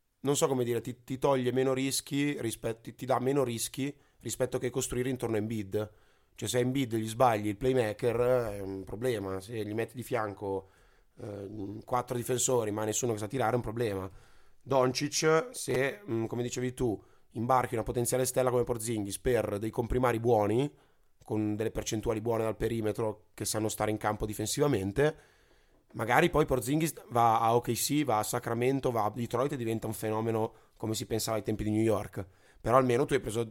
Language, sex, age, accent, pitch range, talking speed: Italian, male, 30-49, native, 105-130 Hz, 185 wpm